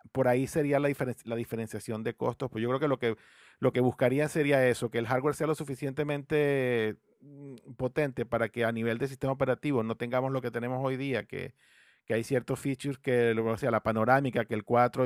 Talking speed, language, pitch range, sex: 215 wpm, English, 110-135 Hz, male